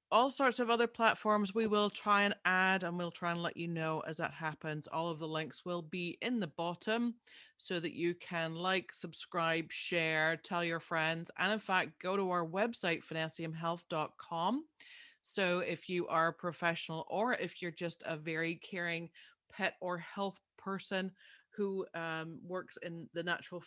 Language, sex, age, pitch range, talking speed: English, female, 30-49, 165-195 Hz, 175 wpm